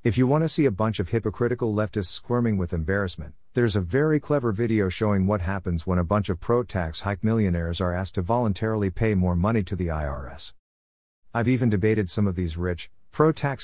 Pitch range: 85-115 Hz